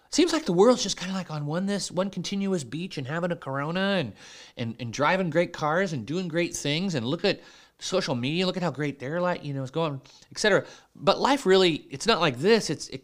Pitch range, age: 125-180 Hz, 30-49